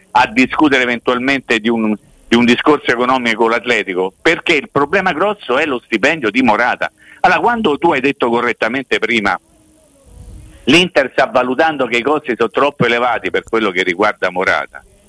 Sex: male